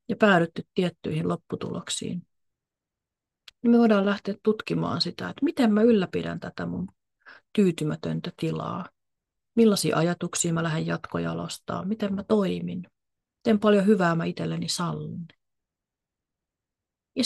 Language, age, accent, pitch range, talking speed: Finnish, 30-49, native, 150-195 Hz, 115 wpm